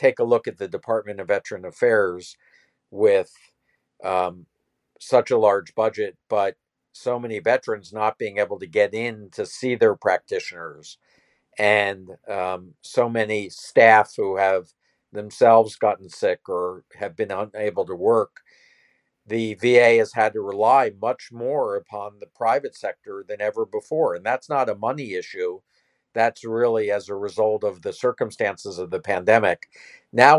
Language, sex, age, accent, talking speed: English, male, 50-69, American, 155 wpm